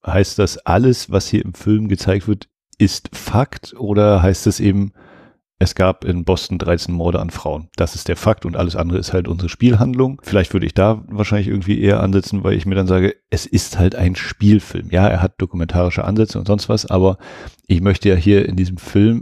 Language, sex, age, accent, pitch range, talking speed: German, male, 40-59, German, 90-105 Hz, 210 wpm